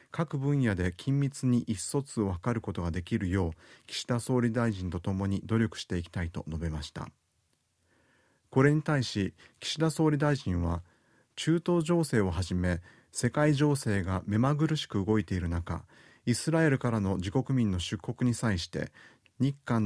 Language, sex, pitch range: Japanese, male, 95-135 Hz